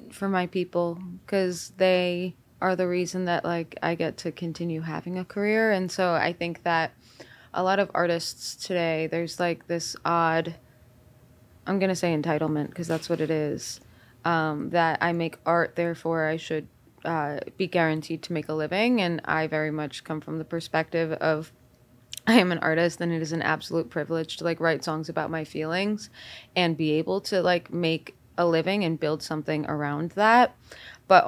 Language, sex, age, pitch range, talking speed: English, female, 20-39, 155-175 Hz, 180 wpm